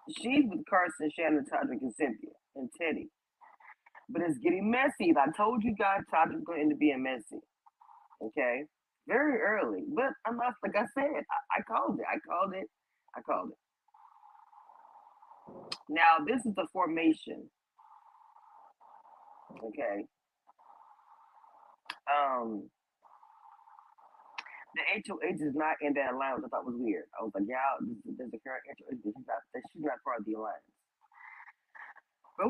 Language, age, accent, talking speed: English, 30-49, American, 145 wpm